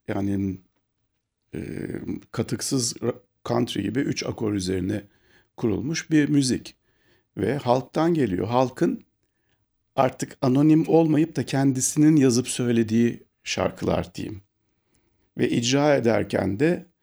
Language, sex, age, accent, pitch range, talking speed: Turkish, male, 50-69, native, 100-125 Hz, 100 wpm